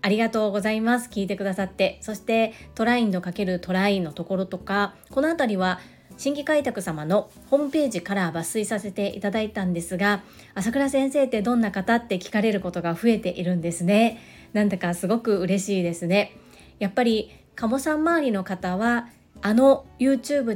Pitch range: 185-240 Hz